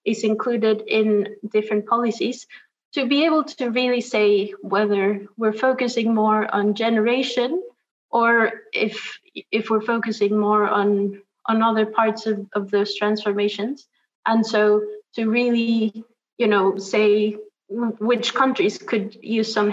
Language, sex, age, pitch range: English, female, 20-39, 210-235 Hz